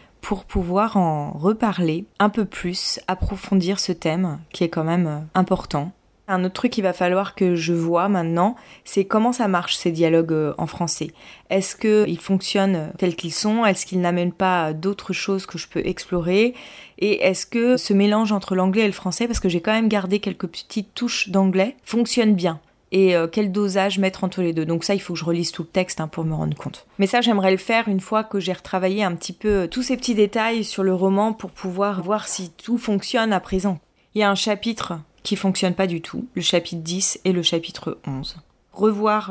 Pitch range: 175-205 Hz